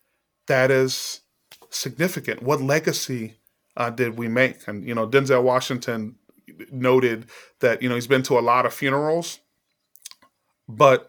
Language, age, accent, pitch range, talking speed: English, 30-49, American, 120-150 Hz, 140 wpm